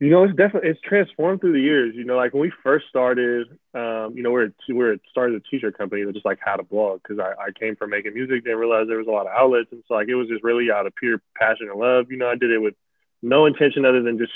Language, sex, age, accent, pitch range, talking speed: English, male, 20-39, American, 110-125 Hz, 295 wpm